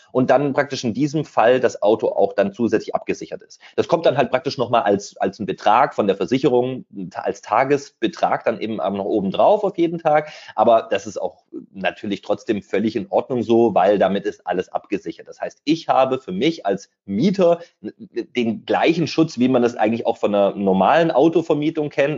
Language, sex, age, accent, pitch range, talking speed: German, male, 30-49, German, 115-165 Hz, 195 wpm